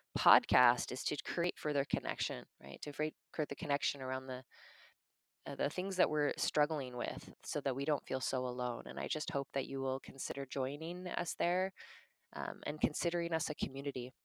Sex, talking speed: female, 190 wpm